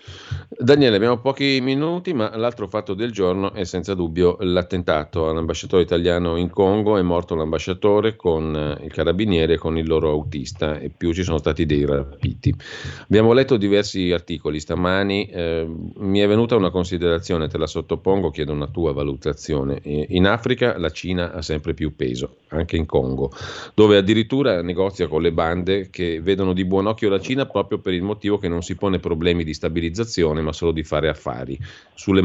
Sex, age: male, 40-59